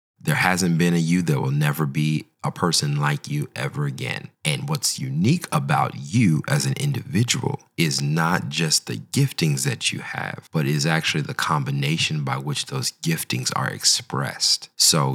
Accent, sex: American, male